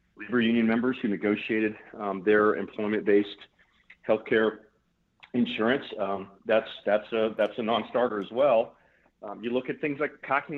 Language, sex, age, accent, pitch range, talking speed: English, male, 40-59, American, 105-130 Hz, 155 wpm